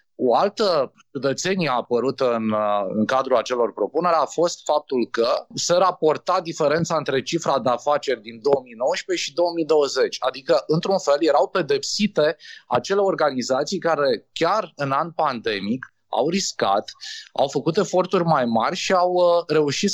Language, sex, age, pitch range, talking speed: Romanian, male, 20-39, 135-195 Hz, 140 wpm